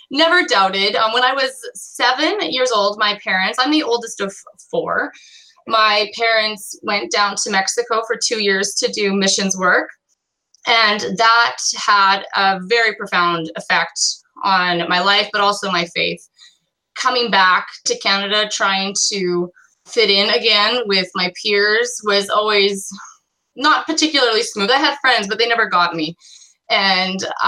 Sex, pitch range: female, 185-230 Hz